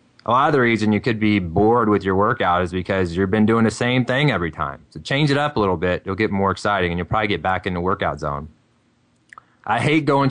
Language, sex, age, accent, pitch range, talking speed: English, male, 20-39, American, 95-115 Hz, 260 wpm